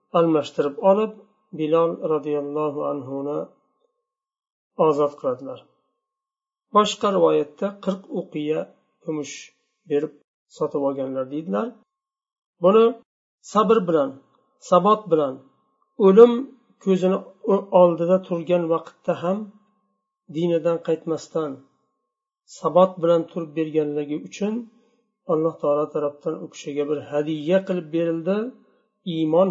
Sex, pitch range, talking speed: male, 160-220 Hz, 75 wpm